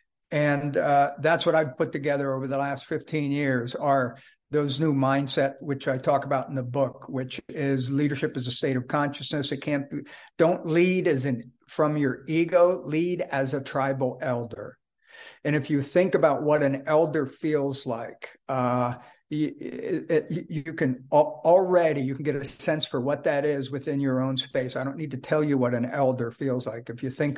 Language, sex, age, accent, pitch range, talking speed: English, male, 50-69, American, 135-155 Hz, 195 wpm